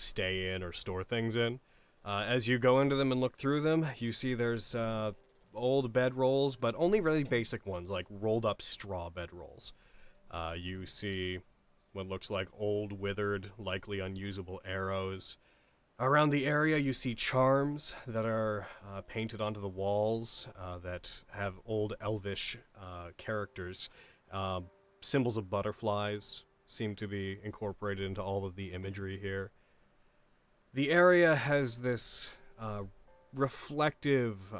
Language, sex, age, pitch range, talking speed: English, male, 30-49, 95-125 Hz, 140 wpm